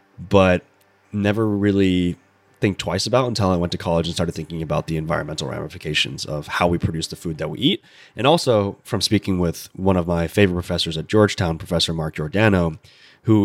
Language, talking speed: English, 190 wpm